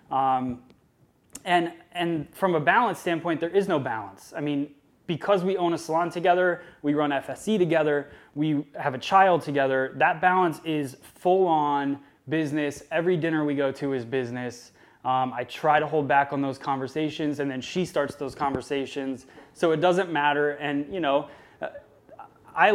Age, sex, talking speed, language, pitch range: 20-39, male, 165 wpm, English, 135-165 Hz